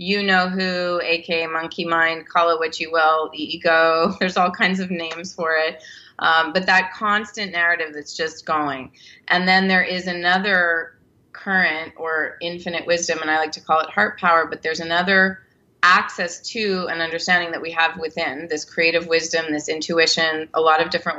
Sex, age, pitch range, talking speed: female, 30-49, 160-180 Hz, 180 wpm